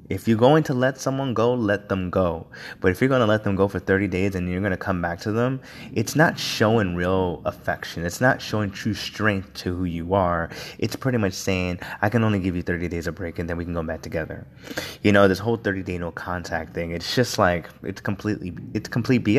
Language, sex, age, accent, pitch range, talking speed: English, male, 20-39, American, 85-115 Hz, 235 wpm